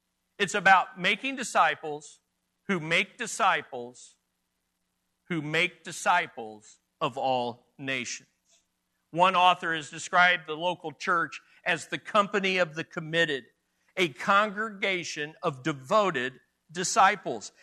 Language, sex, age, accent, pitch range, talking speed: English, male, 50-69, American, 165-245 Hz, 105 wpm